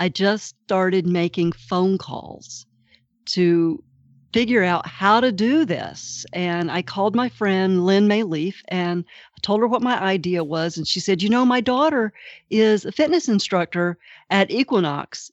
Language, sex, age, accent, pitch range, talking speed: English, female, 50-69, American, 170-210 Hz, 160 wpm